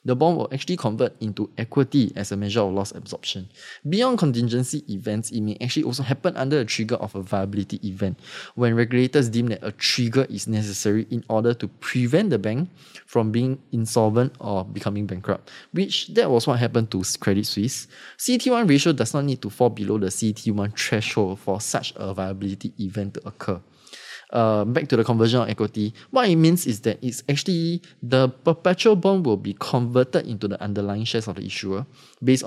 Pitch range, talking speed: 105-135 Hz, 190 wpm